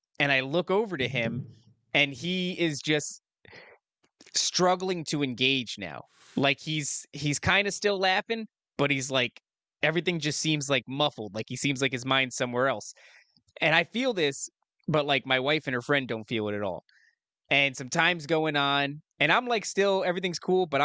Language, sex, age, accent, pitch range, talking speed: English, male, 20-39, American, 135-180 Hz, 185 wpm